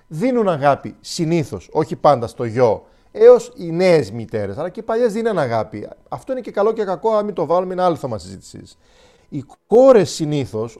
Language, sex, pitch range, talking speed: Greek, male, 135-200 Hz, 185 wpm